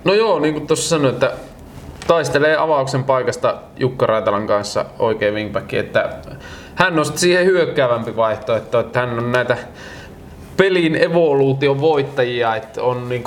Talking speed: 140 wpm